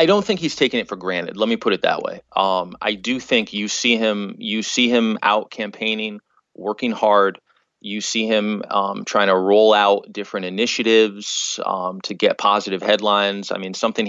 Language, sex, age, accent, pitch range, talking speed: English, male, 30-49, American, 95-110 Hz, 195 wpm